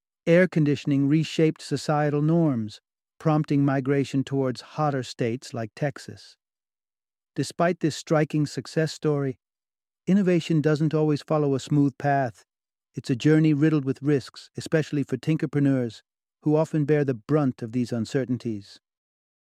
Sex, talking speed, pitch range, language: male, 125 wpm, 130-155 Hz, English